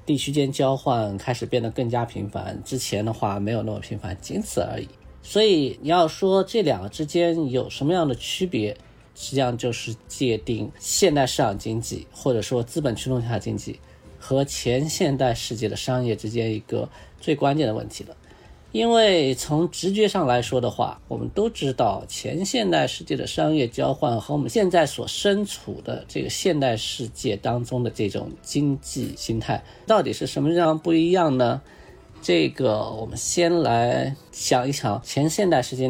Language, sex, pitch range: Chinese, male, 110-150 Hz